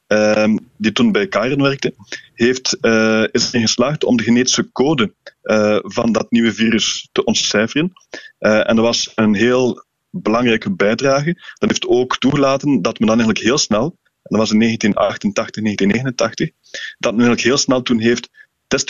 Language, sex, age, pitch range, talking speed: Dutch, male, 20-39, 110-140 Hz, 170 wpm